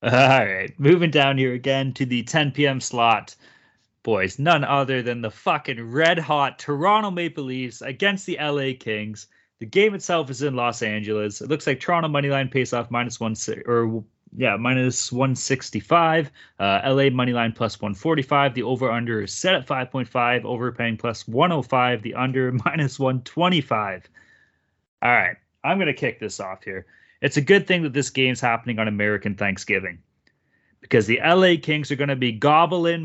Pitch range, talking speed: 120-155 Hz, 170 wpm